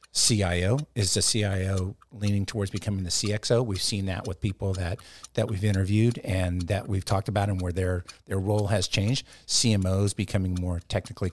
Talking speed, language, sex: 180 wpm, English, male